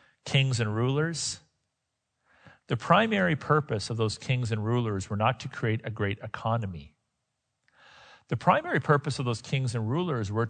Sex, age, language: male, 50-69, English